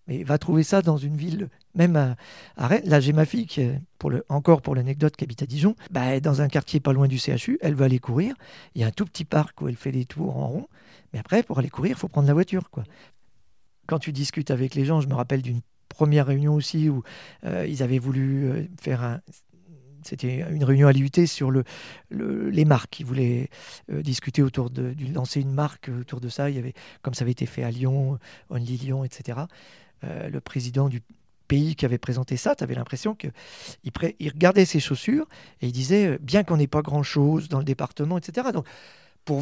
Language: French